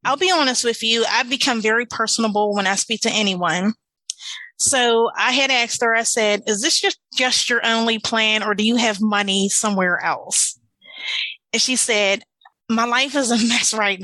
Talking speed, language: 190 wpm, English